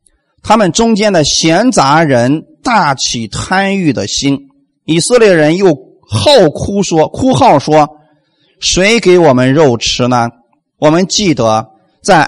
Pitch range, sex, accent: 140-205 Hz, male, native